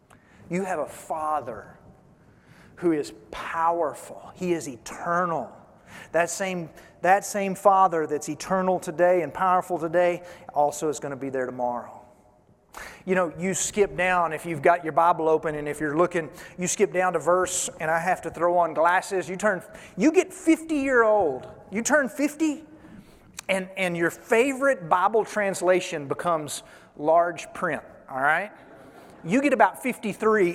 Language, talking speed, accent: English, 155 wpm, American